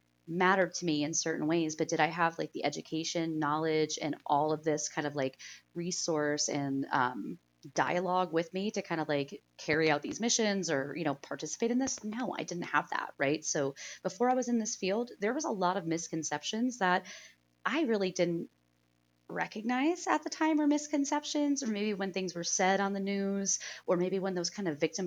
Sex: female